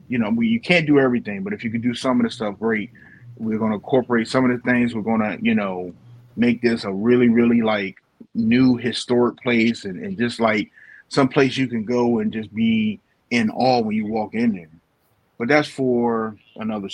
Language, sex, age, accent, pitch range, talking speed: English, male, 30-49, American, 105-125 Hz, 215 wpm